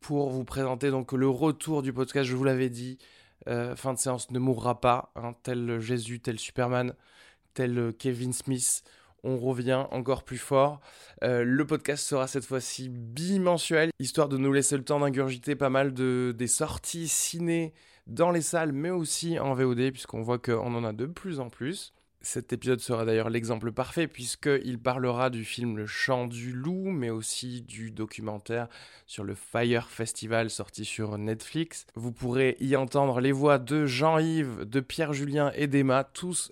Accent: French